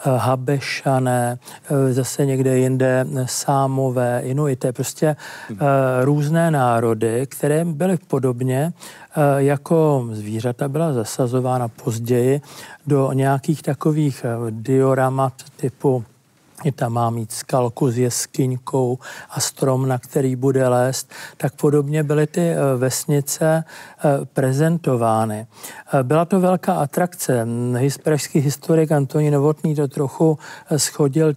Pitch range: 130-155 Hz